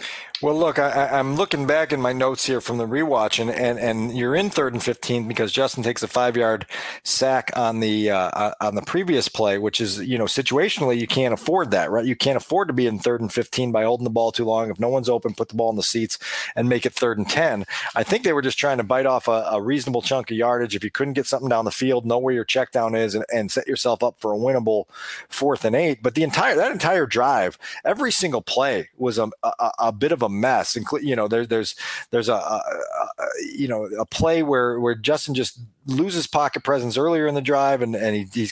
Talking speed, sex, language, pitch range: 250 wpm, male, English, 120-155 Hz